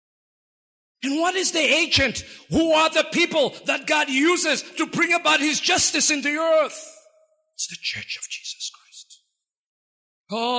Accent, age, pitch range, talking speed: South African, 50-69, 200-315 Hz, 155 wpm